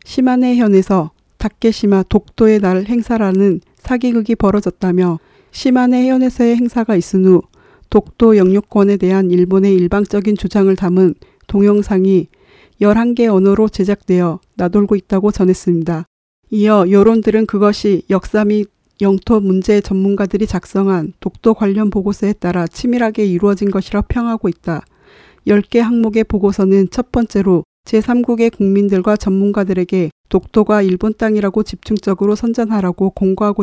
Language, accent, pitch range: Korean, native, 190-220 Hz